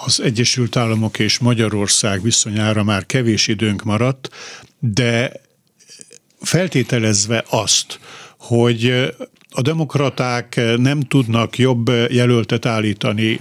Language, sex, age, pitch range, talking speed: Hungarian, male, 60-79, 110-130 Hz, 95 wpm